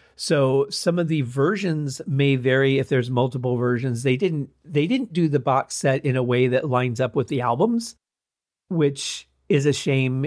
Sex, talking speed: male, 185 wpm